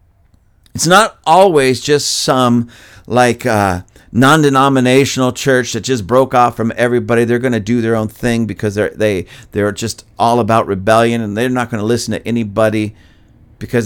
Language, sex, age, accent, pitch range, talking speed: English, male, 50-69, American, 110-150 Hz, 170 wpm